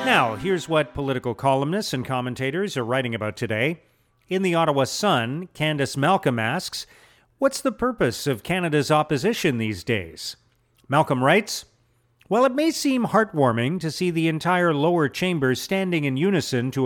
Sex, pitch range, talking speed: male, 125-180 Hz, 155 wpm